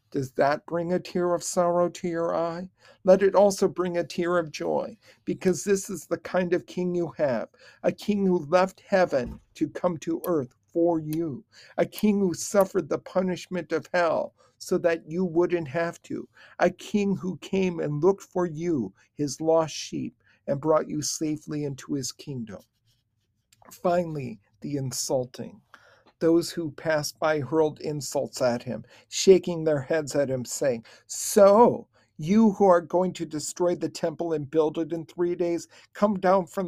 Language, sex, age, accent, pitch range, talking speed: English, male, 50-69, American, 150-180 Hz, 170 wpm